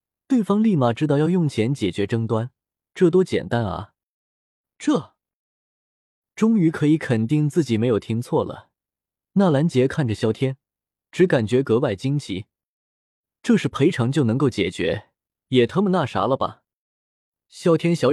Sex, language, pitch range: male, Chinese, 110-155 Hz